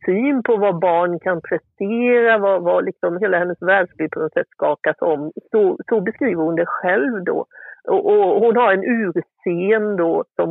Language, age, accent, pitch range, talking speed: Swedish, 50-69, native, 175-245 Hz, 185 wpm